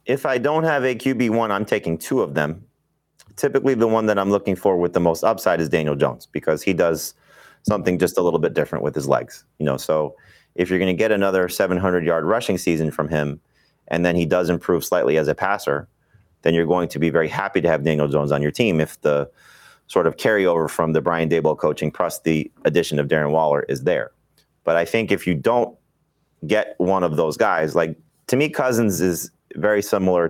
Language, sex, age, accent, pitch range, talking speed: English, male, 30-49, American, 75-95 Hz, 220 wpm